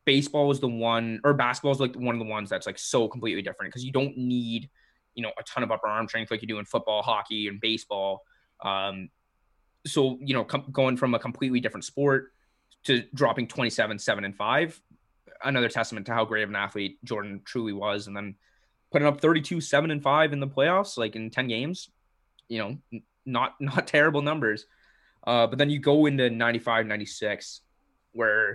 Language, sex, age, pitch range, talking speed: English, male, 20-39, 110-135 Hz, 200 wpm